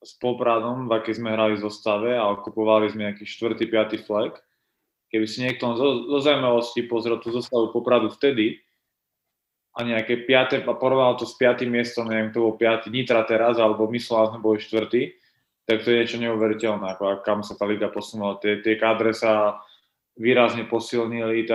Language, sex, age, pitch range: Slovak, male, 20-39, 110-120 Hz